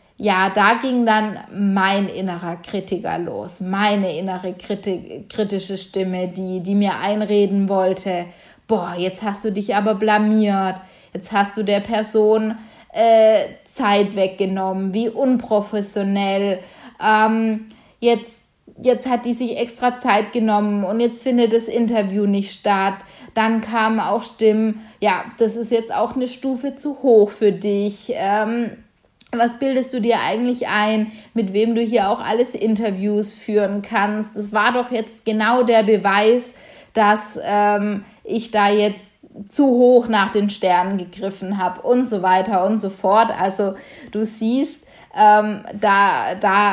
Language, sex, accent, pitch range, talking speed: German, female, German, 195-225 Hz, 145 wpm